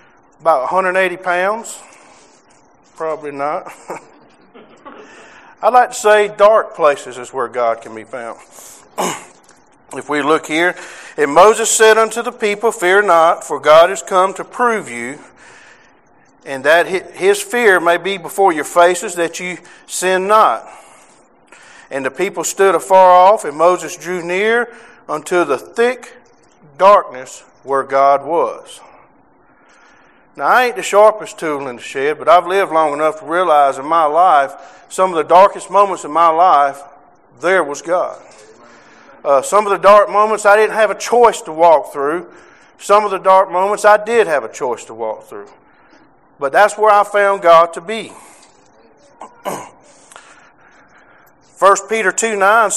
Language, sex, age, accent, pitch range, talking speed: English, male, 50-69, American, 165-215 Hz, 150 wpm